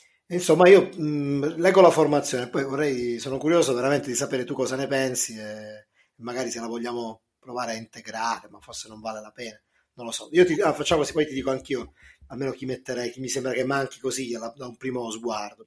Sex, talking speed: male, 220 wpm